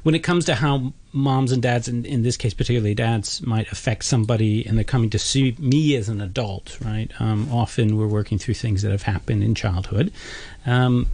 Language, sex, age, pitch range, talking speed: English, male, 40-59, 110-130 Hz, 210 wpm